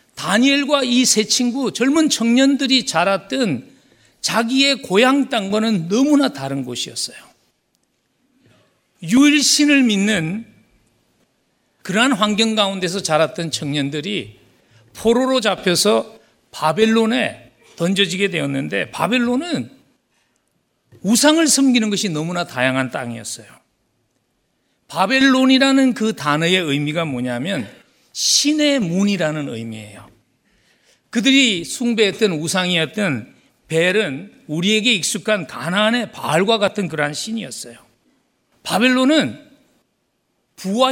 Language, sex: Korean, male